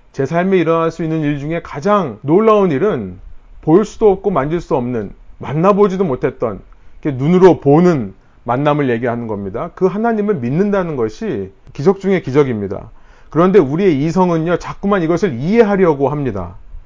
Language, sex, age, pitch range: Korean, male, 40-59, 130-195 Hz